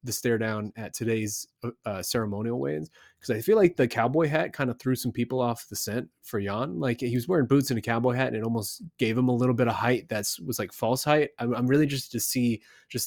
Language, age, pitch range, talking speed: English, 20-39, 110-140 Hz, 255 wpm